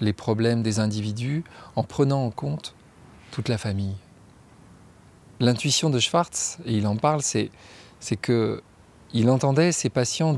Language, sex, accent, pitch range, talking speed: French, male, French, 105-130 Hz, 145 wpm